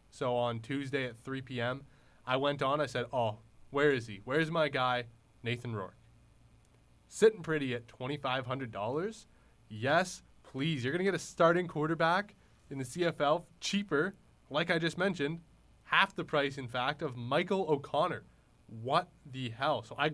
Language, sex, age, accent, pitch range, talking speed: English, male, 20-39, American, 120-150 Hz, 165 wpm